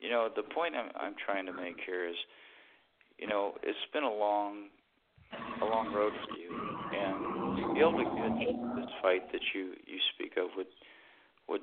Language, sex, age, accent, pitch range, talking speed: English, male, 40-59, American, 95-115 Hz, 190 wpm